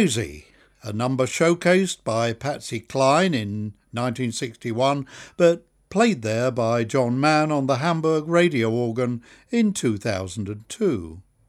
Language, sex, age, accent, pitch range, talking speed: English, male, 60-79, British, 115-165 Hz, 110 wpm